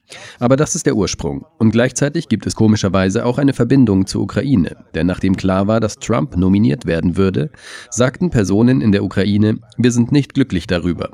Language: German